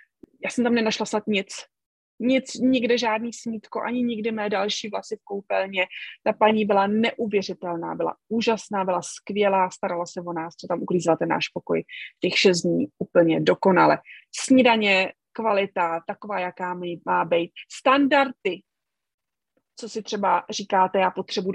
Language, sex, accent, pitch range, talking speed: Czech, female, native, 185-220 Hz, 150 wpm